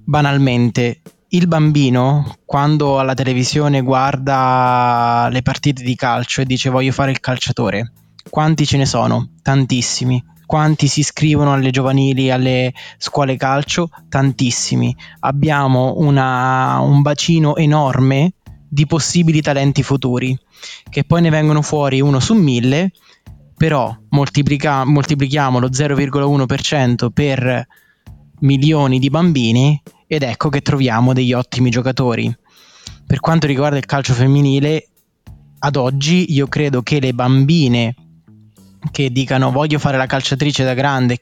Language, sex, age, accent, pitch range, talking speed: Italian, male, 20-39, native, 125-145 Hz, 120 wpm